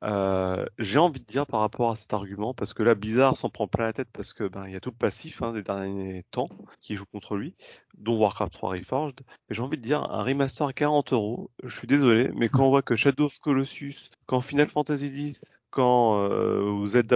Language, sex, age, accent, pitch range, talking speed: French, male, 30-49, French, 105-135 Hz, 235 wpm